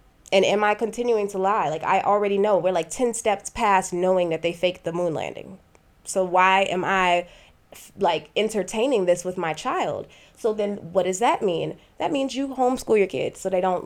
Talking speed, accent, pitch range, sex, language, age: 205 wpm, American, 170-200 Hz, female, English, 20-39